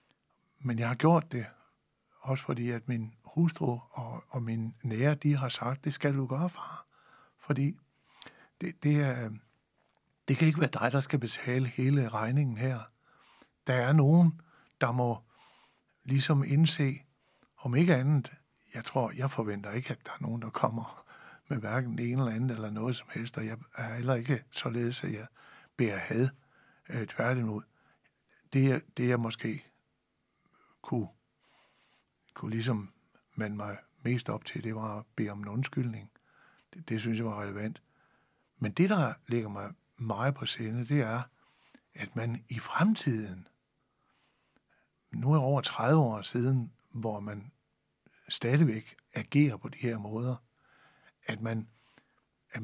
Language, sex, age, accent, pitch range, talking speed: Danish, male, 60-79, native, 115-145 Hz, 155 wpm